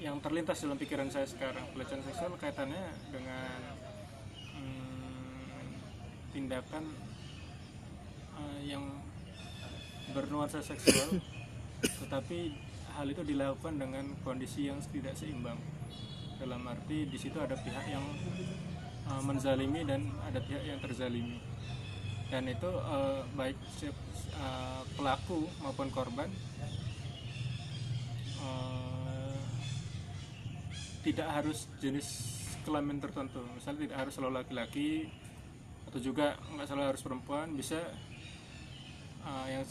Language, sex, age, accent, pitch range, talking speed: Indonesian, male, 20-39, native, 125-140 Hz, 100 wpm